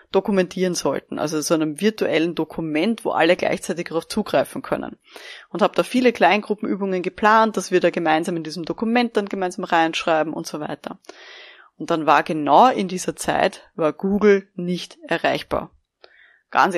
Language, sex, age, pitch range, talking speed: German, female, 20-39, 175-215 Hz, 155 wpm